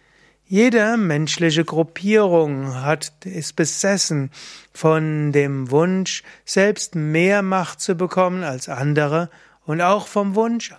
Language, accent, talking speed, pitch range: German, German, 110 wpm, 150-190 Hz